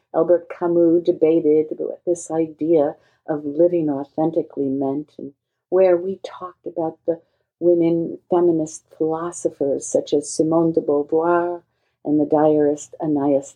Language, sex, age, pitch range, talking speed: English, female, 50-69, 145-180 Hz, 125 wpm